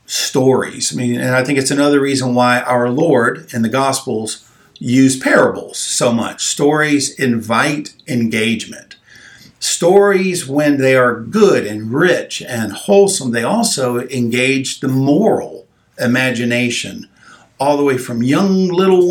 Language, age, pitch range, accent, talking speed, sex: English, 50-69, 120-150 Hz, American, 135 wpm, male